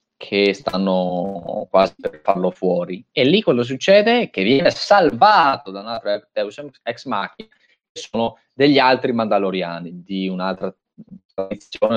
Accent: native